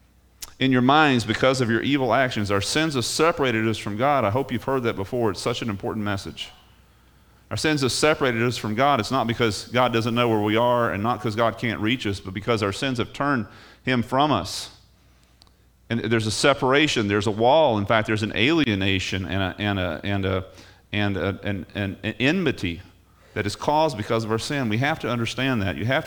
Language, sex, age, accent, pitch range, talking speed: English, male, 40-59, American, 100-135 Hz, 200 wpm